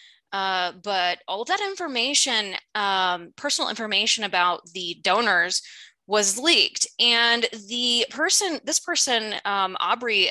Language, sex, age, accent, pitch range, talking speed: English, female, 20-39, American, 195-265 Hz, 115 wpm